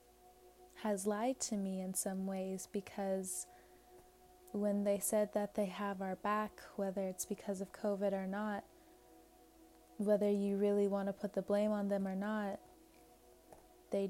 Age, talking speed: 20-39, 155 wpm